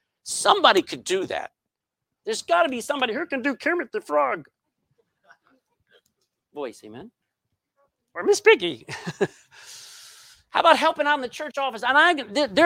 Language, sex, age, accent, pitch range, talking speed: English, male, 50-69, American, 210-320 Hz, 145 wpm